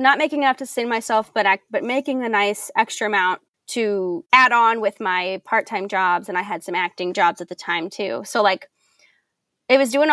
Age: 20-39